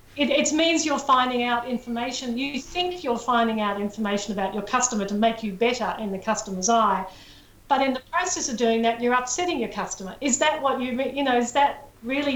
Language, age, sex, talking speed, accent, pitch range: English, 50-69, female, 220 wpm, Australian, 225-285 Hz